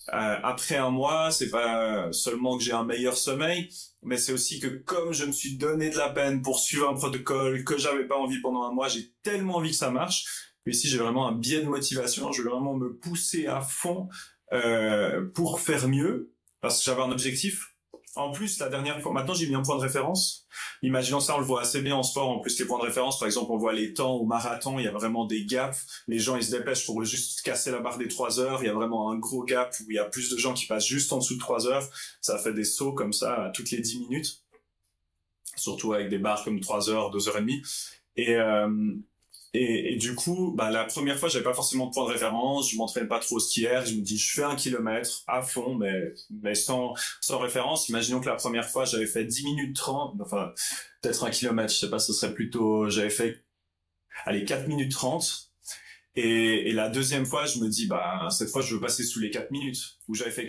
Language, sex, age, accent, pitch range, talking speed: French, male, 30-49, French, 110-140 Hz, 245 wpm